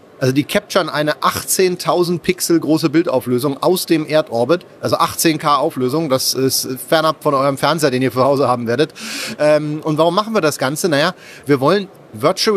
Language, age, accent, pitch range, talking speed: German, 30-49, German, 140-175 Hz, 170 wpm